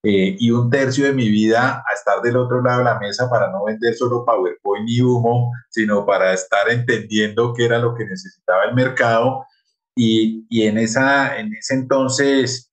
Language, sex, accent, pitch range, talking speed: Spanish, male, Colombian, 110-135 Hz, 190 wpm